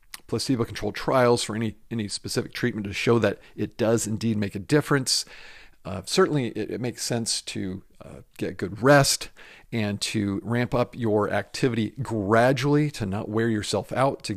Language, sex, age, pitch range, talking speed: English, male, 50-69, 105-130 Hz, 165 wpm